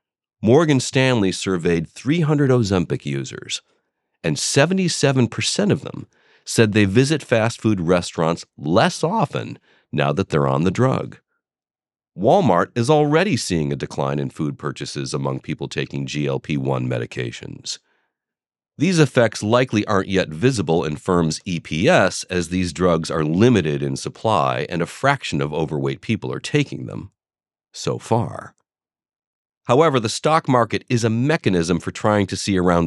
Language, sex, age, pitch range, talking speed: English, male, 40-59, 80-125 Hz, 140 wpm